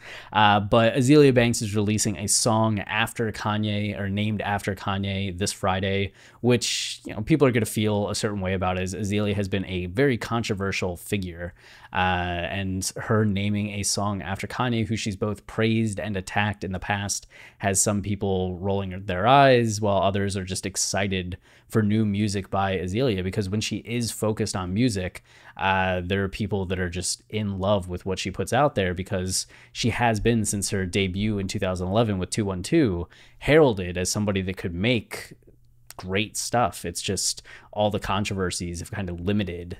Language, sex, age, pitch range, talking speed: English, male, 20-39, 95-110 Hz, 180 wpm